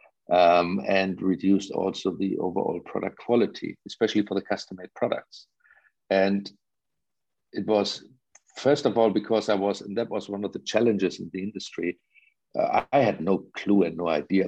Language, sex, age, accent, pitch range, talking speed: English, male, 50-69, German, 95-115 Hz, 165 wpm